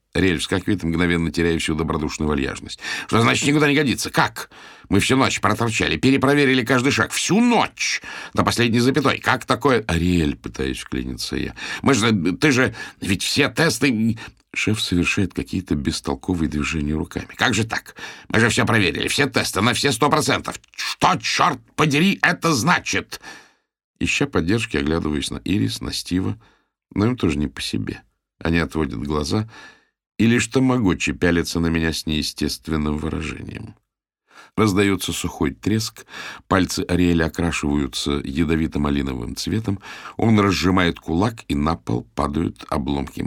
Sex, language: male, Russian